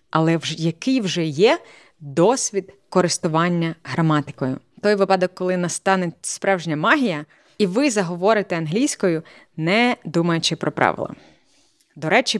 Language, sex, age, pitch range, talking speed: Ukrainian, female, 20-39, 155-205 Hz, 115 wpm